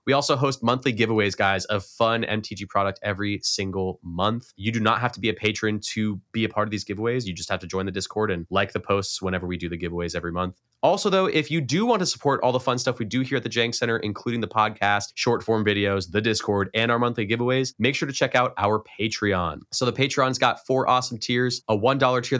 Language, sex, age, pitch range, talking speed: English, male, 20-39, 100-125 Hz, 250 wpm